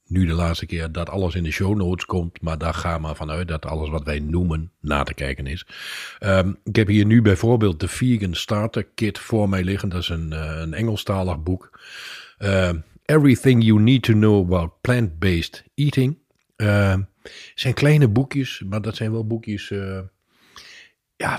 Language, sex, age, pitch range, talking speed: Dutch, male, 50-69, 85-105 Hz, 185 wpm